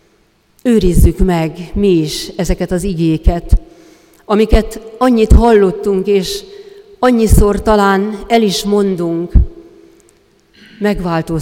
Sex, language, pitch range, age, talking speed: female, Hungarian, 165-220 Hz, 40-59, 90 wpm